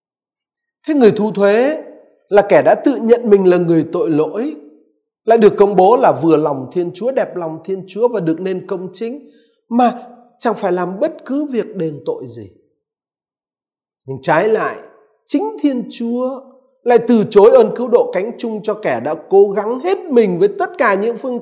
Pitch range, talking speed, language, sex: 180-265 Hz, 190 wpm, Vietnamese, male